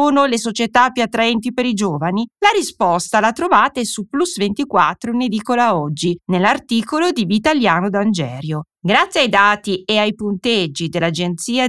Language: Italian